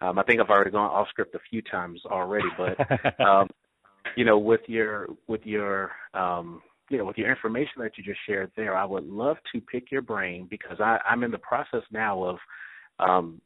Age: 30-49